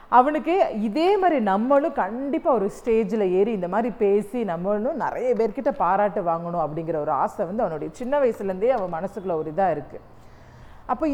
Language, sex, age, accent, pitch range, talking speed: Tamil, female, 40-59, native, 185-260 Hz, 150 wpm